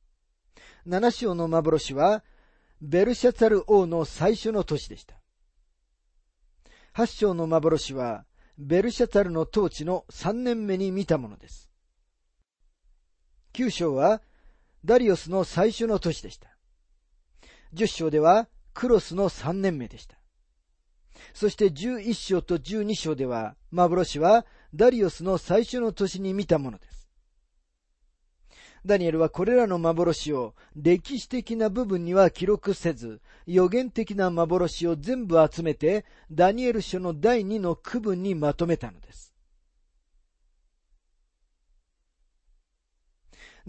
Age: 40-59